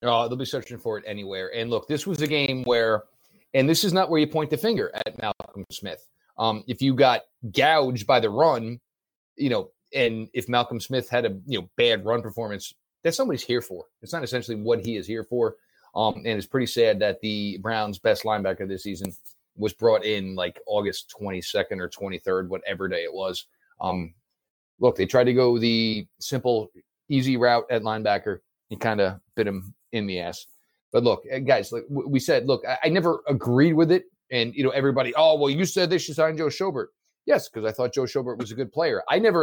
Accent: American